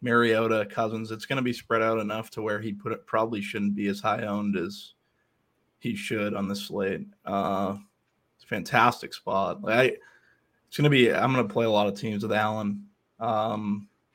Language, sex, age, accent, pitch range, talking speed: English, male, 20-39, American, 110-130 Hz, 195 wpm